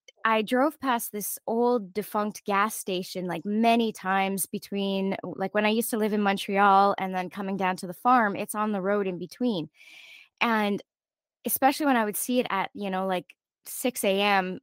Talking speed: 185 wpm